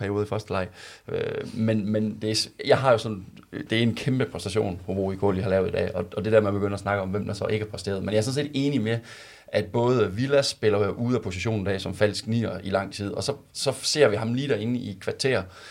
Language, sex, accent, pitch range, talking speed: Danish, male, native, 105-125 Hz, 270 wpm